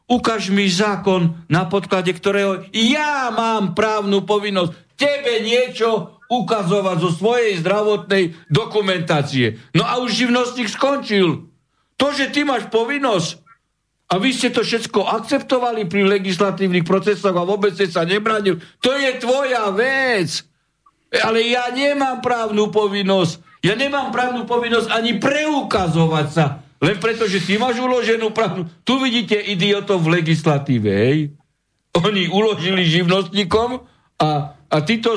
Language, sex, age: Slovak, male, 60-79